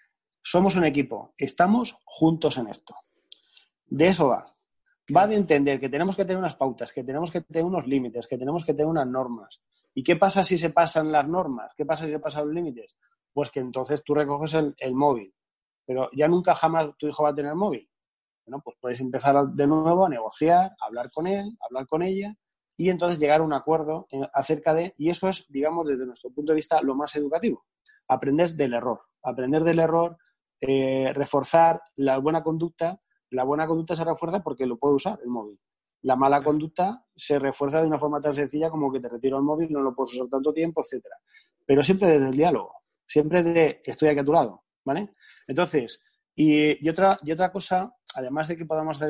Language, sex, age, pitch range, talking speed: Spanish, male, 30-49, 135-165 Hz, 215 wpm